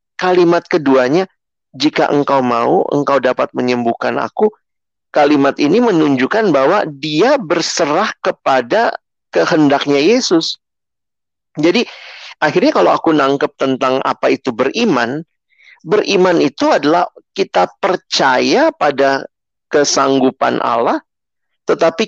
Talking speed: 100 wpm